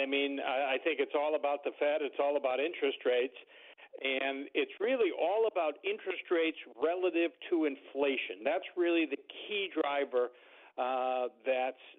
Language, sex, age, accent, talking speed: English, male, 50-69, American, 155 wpm